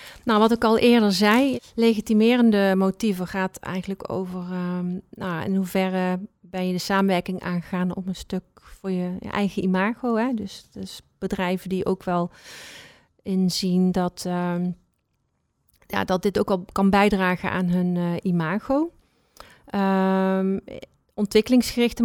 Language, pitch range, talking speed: Dutch, 185-215 Hz, 140 wpm